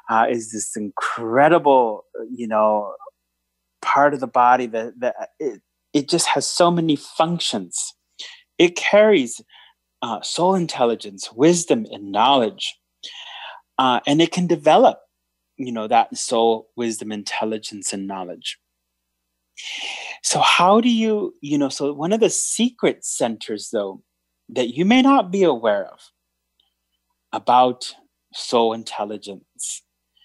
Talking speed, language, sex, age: 125 wpm, English, male, 30-49